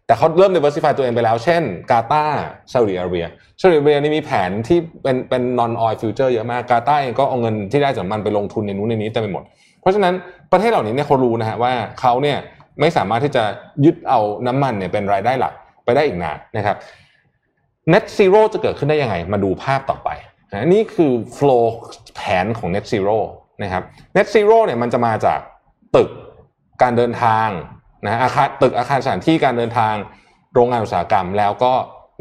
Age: 20-39